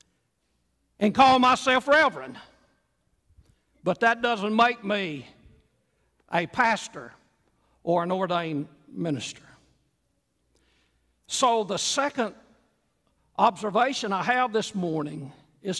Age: 60-79